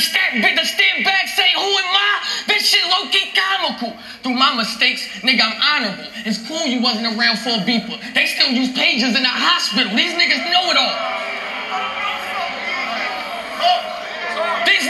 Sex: male